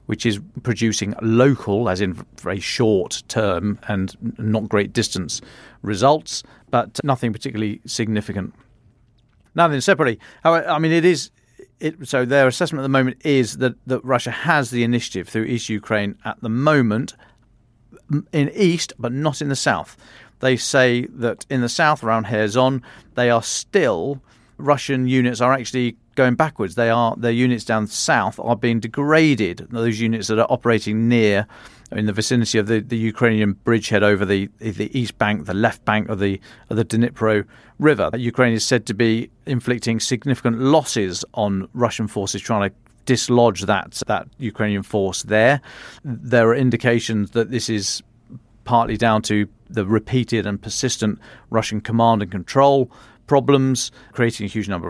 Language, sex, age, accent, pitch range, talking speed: English, male, 40-59, British, 110-130 Hz, 160 wpm